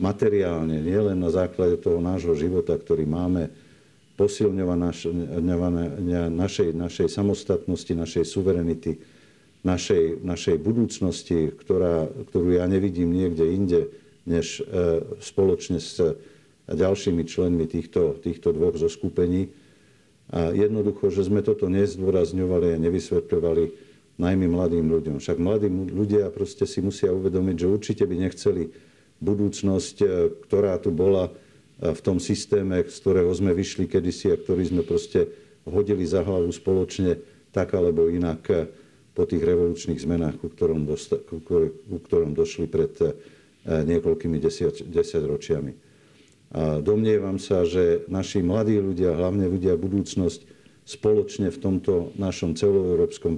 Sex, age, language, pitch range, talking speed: male, 50-69, Slovak, 85-105 Hz, 125 wpm